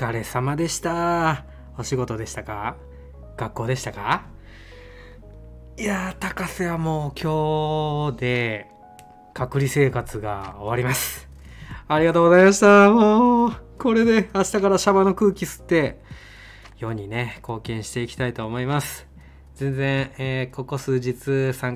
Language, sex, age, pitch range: Japanese, male, 20-39, 115-160 Hz